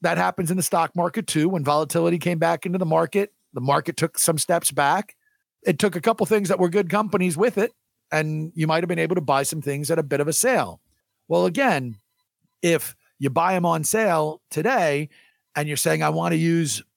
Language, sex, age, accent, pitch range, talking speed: English, male, 50-69, American, 150-190 Hz, 220 wpm